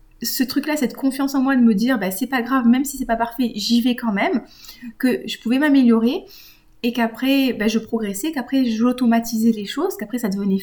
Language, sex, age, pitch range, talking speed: French, female, 30-49, 205-255 Hz, 225 wpm